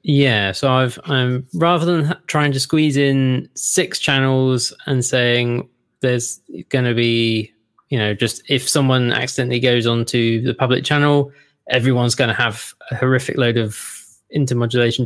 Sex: male